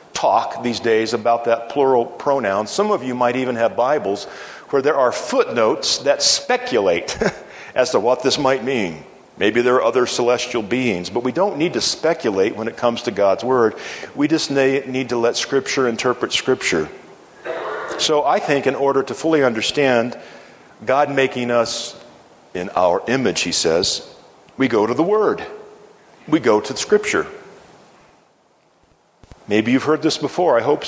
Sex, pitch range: male, 120-150 Hz